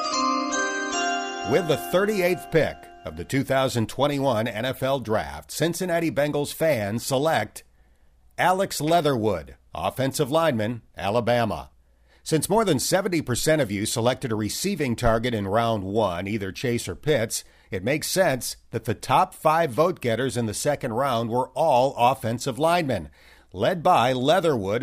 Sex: male